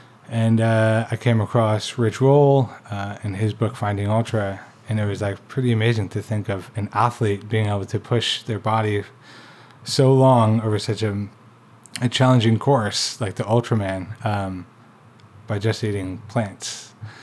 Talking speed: 160 wpm